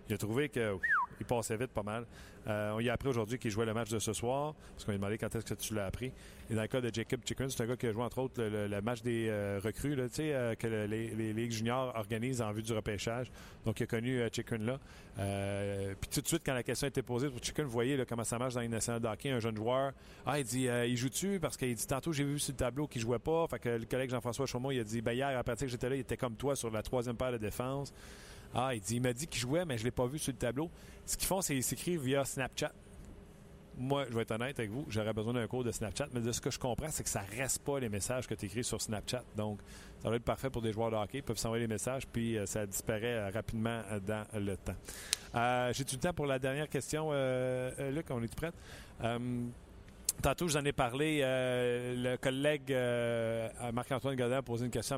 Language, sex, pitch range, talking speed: French, male, 110-130 Hz, 285 wpm